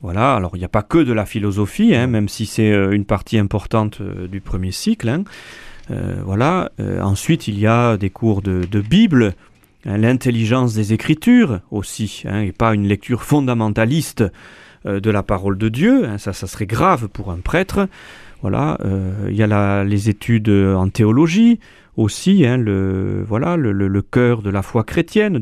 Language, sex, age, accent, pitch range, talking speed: French, male, 40-59, French, 100-140 Hz, 190 wpm